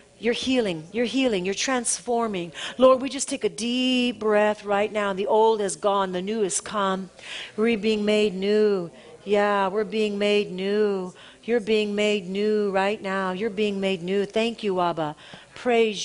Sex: female